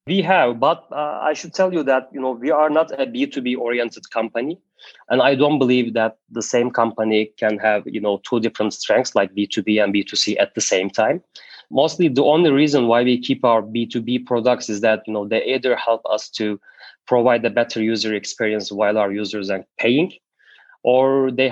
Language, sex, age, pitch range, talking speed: English, male, 30-49, 110-130 Hz, 200 wpm